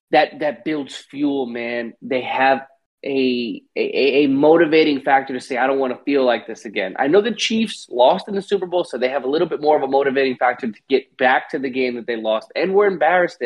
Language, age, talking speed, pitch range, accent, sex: English, 20-39, 240 wpm, 130-180 Hz, American, male